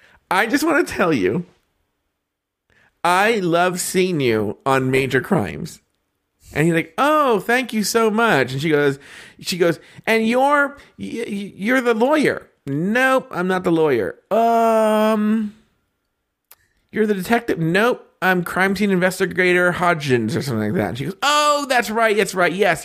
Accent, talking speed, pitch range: American, 155 wpm, 135-220 Hz